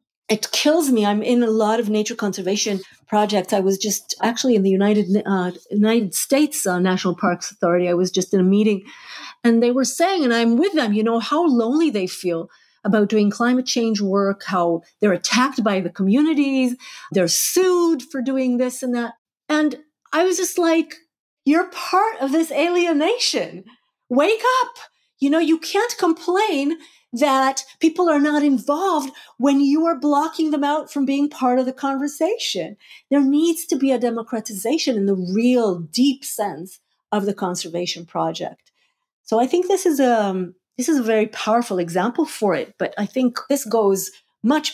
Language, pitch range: Polish, 195-300 Hz